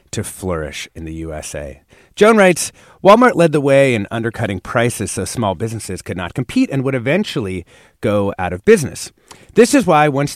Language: English